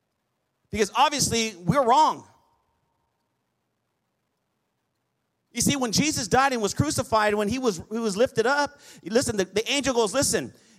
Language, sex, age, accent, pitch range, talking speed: English, male, 40-59, American, 200-260 Hz, 140 wpm